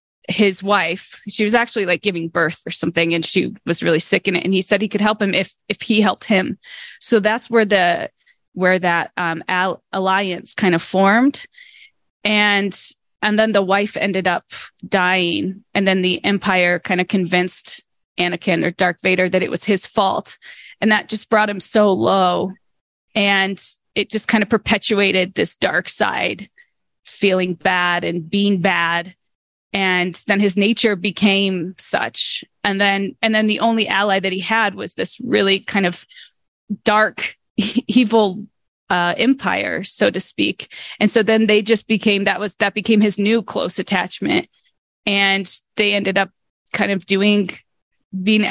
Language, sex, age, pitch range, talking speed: English, female, 20-39, 185-215 Hz, 165 wpm